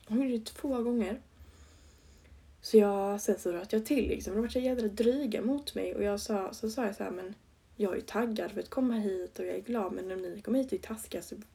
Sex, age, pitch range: female, 20-39, 185-220 Hz